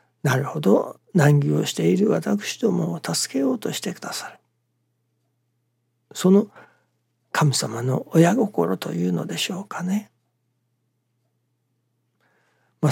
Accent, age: native, 60-79